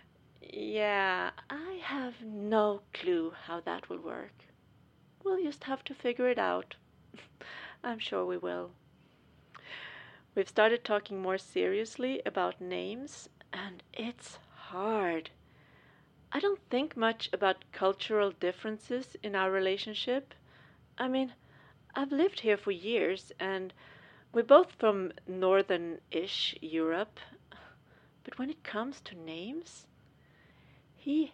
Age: 40-59